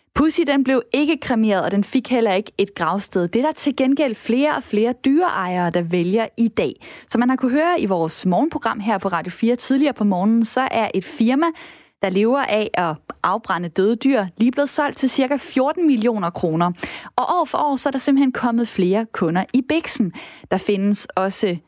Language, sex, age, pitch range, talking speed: Danish, female, 20-39, 200-275 Hz, 210 wpm